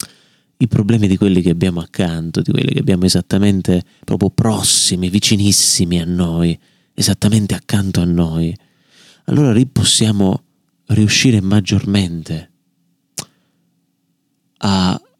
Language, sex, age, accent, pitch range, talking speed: Italian, male, 30-49, native, 90-115 Hz, 105 wpm